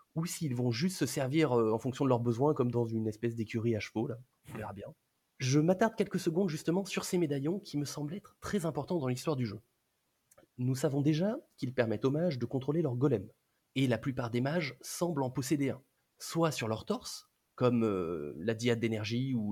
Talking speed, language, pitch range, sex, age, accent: 215 wpm, French, 120-155 Hz, male, 30-49, French